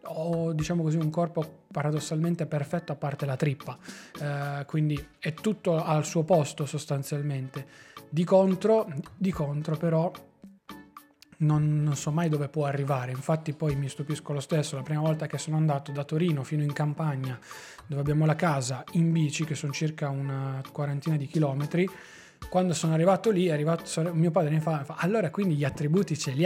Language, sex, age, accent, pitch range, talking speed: Italian, male, 20-39, native, 145-165 Hz, 170 wpm